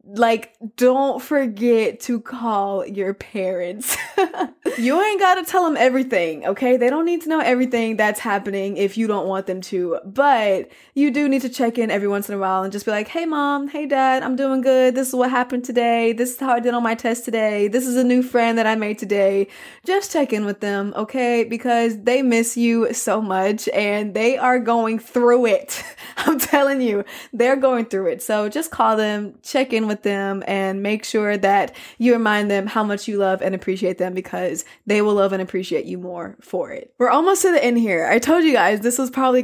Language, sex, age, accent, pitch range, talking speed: English, female, 20-39, American, 205-255 Hz, 220 wpm